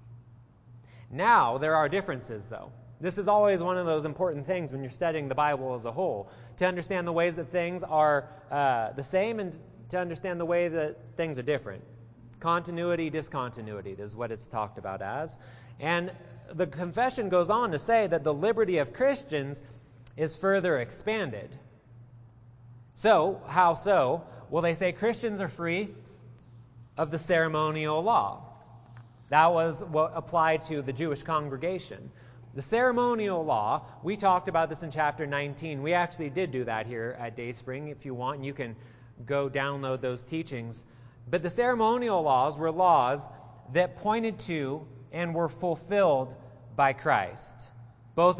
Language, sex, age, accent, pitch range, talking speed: English, male, 30-49, American, 120-175 Hz, 155 wpm